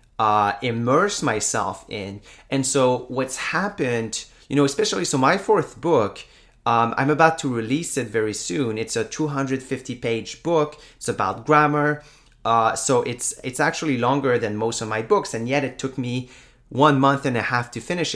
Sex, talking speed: male, 180 wpm